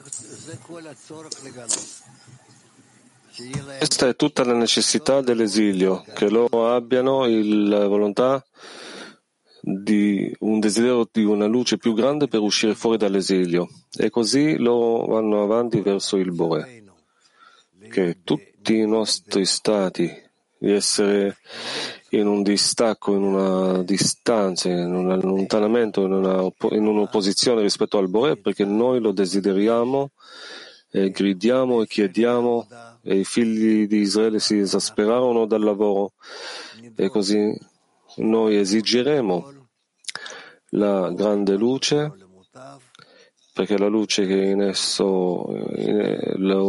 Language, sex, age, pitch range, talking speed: Italian, male, 30-49, 100-120 Hz, 110 wpm